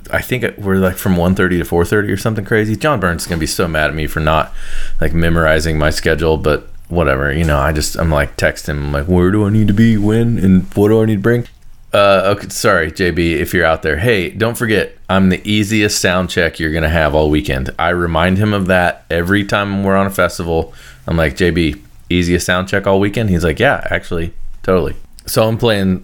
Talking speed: 235 wpm